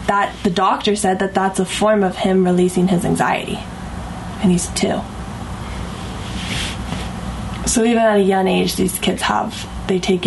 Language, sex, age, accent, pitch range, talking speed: English, female, 10-29, American, 185-205 Hz, 160 wpm